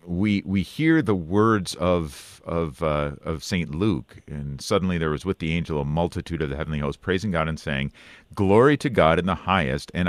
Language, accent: English, American